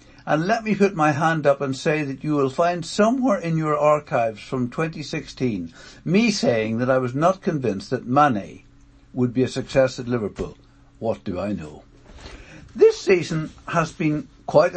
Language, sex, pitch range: English, male, 125-170 Hz